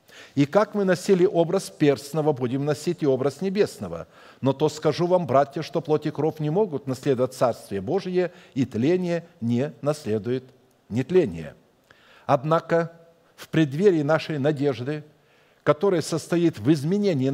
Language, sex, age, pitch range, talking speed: Russian, male, 50-69, 140-165 Hz, 130 wpm